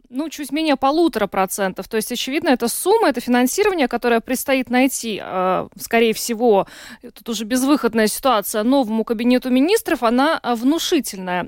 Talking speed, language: 135 wpm, Russian